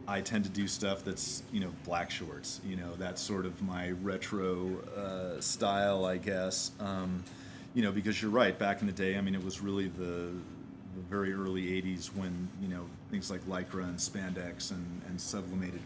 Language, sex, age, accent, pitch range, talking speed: English, male, 30-49, American, 90-100 Hz, 195 wpm